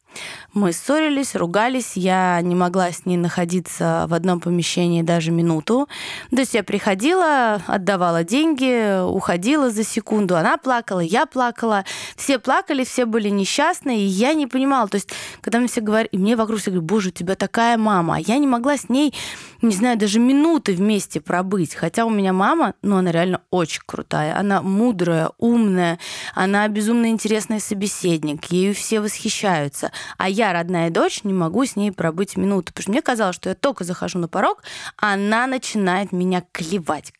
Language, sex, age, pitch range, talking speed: Russian, female, 20-39, 185-245 Hz, 170 wpm